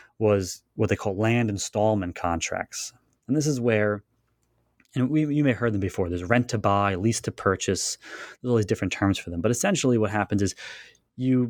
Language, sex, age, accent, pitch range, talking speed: English, male, 20-39, American, 100-120 Hz, 205 wpm